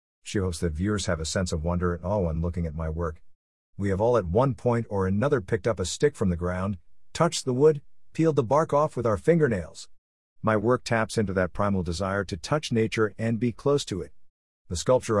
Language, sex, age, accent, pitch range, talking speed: English, male, 50-69, American, 90-120 Hz, 230 wpm